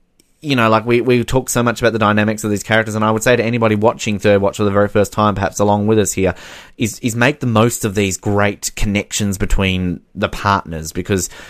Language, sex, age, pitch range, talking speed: English, male, 20-39, 90-110 Hz, 240 wpm